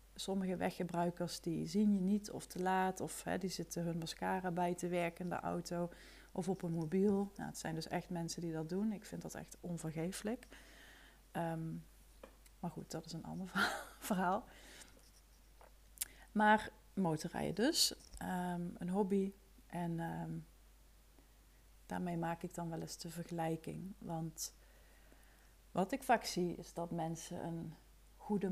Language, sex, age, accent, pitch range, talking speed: Dutch, female, 30-49, Dutch, 165-200 Hz, 140 wpm